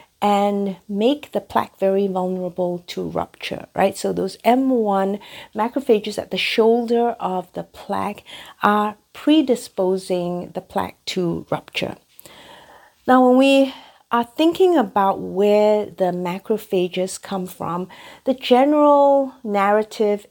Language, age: English, 50-69